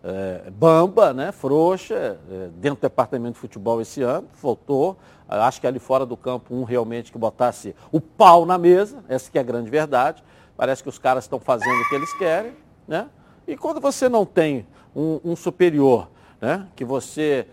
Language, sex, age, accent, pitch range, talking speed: Portuguese, male, 50-69, Brazilian, 130-185 Hz, 180 wpm